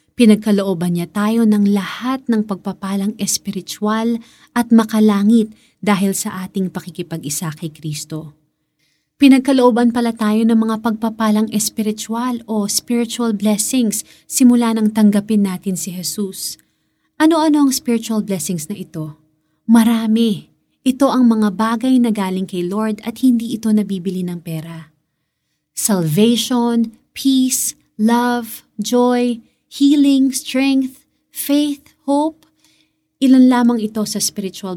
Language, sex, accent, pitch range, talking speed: Filipino, female, native, 180-235 Hz, 115 wpm